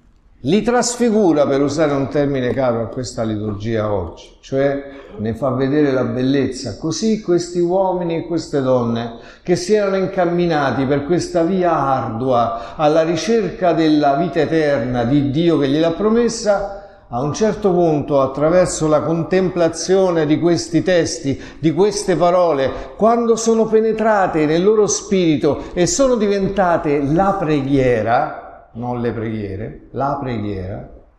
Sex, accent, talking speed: male, native, 135 wpm